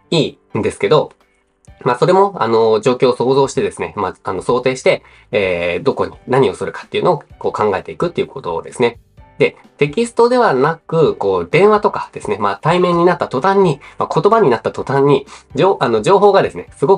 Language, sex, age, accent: Japanese, male, 20-39, native